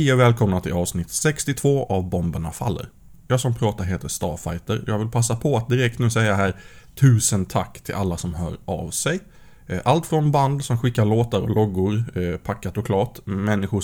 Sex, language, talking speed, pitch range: male, Swedish, 180 wpm, 95-120 Hz